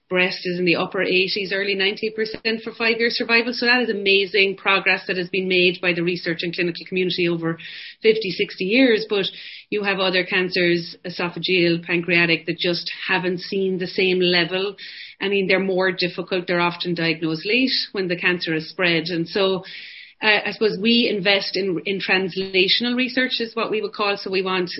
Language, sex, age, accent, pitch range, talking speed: English, female, 30-49, Irish, 180-205 Hz, 185 wpm